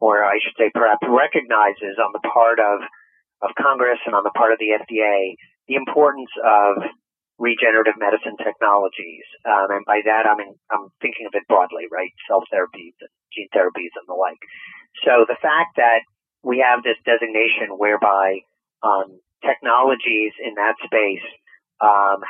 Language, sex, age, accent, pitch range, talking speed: English, male, 40-59, American, 100-125 Hz, 160 wpm